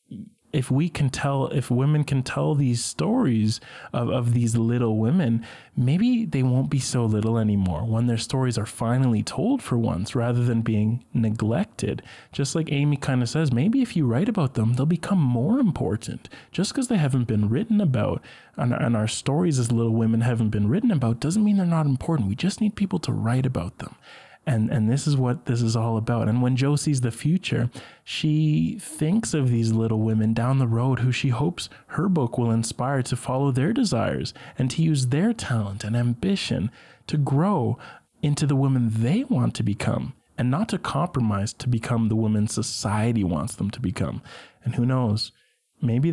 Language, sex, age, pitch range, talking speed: English, male, 20-39, 115-150 Hz, 195 wpm